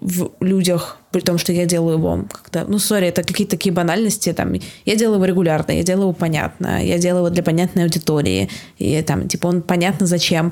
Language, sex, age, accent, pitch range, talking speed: Russian, female, 20-39, native, 170-185 Hz, 205 wpm